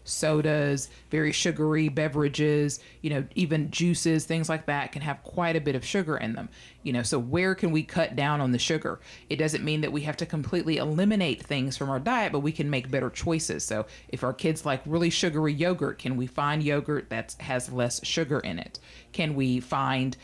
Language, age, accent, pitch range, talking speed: English, 40-59, American, 135-165 Hz, 210 wpm